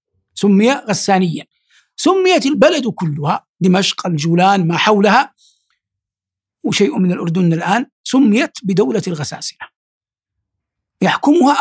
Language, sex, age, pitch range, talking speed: Arabic, male, 60-79, 155-235 Hz, 90 wpm